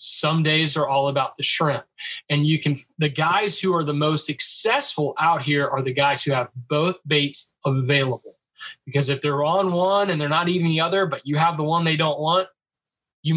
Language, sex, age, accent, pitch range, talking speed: English, male, 20-39, American, 135-170 Hz, 210 wpm